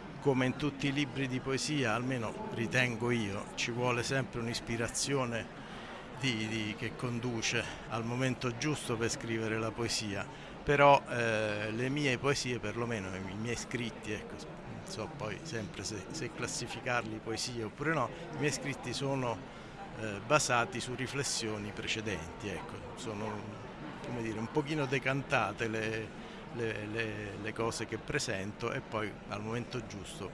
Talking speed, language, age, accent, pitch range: 130 wpm, Italian, 60-79, native, 110-130 Hz